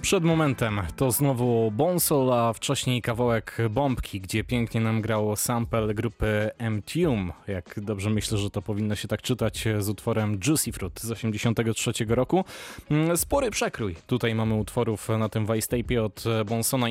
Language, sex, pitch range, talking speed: Polish, male, 110-125 Hz, 155 wpm